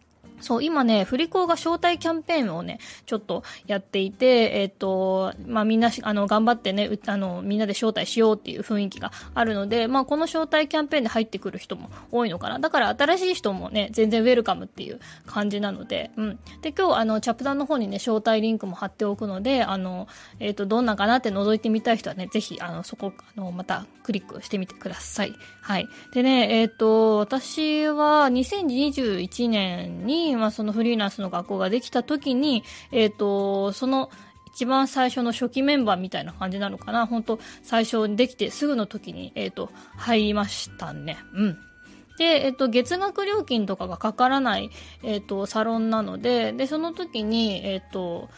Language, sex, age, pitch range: Japanese, female, 20-39, 205-265 Hz